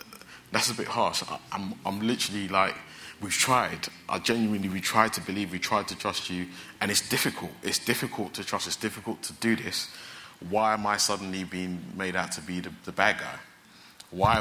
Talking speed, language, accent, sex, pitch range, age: 195 wpm, English, British, male, 85-105 Hz, 20-39